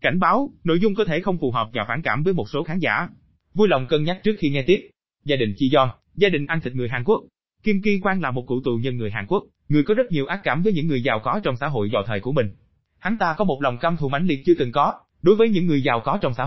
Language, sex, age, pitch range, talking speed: Vietnamese, male, 20-39, 125-185 Hz, 310 wpm